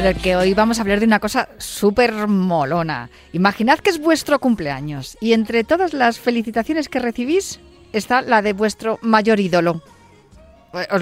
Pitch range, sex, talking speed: 180-230 Hz, female, 150 wpm